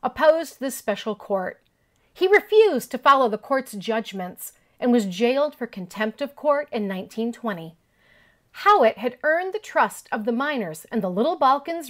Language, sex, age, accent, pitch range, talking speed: English, female, 40-59, American, 215-290 Hz, 160 wpm